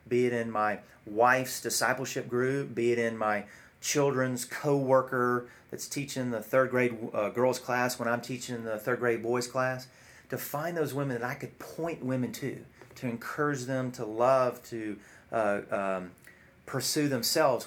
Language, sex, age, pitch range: English, male, 40-59, 115-135 Hz